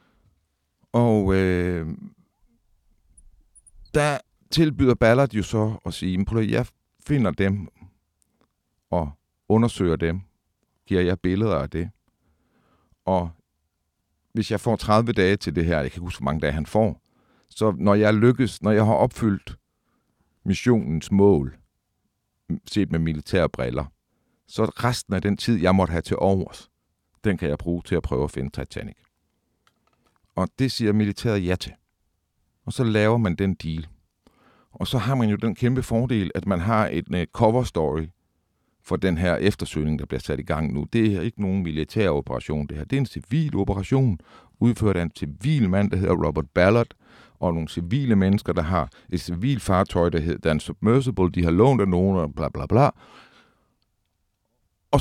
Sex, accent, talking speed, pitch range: male, native, 165 wpm, 85-110 Hz